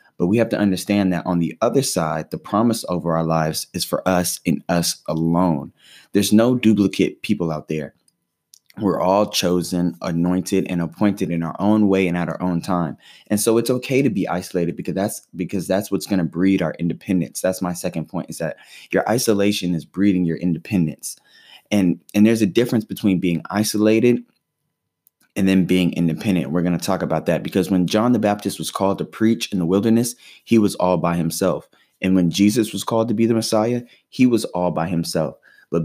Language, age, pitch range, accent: English, 20-39, 85-105 Hz, American